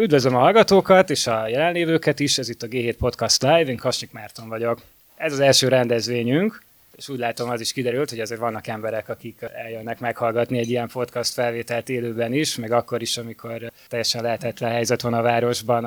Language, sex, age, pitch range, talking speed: Hungarian, male, 20-39, 115-130 Hz, 190 wpm